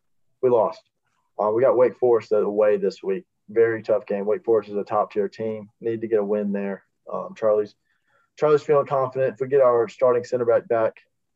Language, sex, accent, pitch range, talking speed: English, male, American, 105-130 Hz, 205 wpm